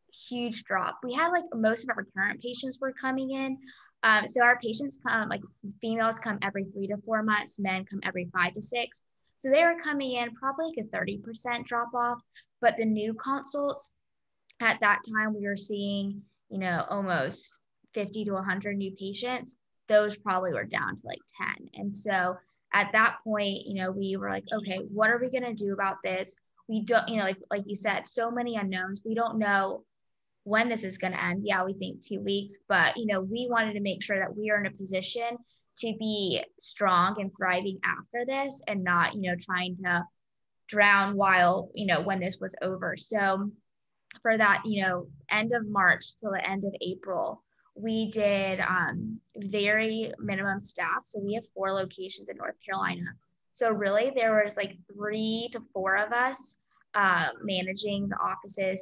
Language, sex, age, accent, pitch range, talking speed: English, female, 10-29, American, 195-230 Hz, 195 wpm